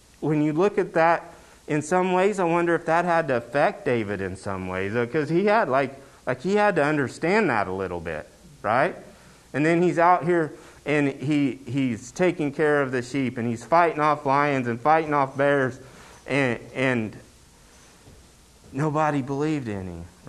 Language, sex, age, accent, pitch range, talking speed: English, male, 30-49, American, 85-140 Hz, 180 wpm